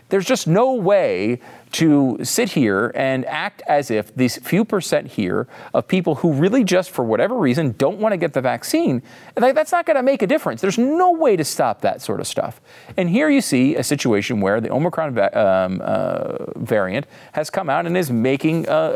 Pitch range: 115-160 Hz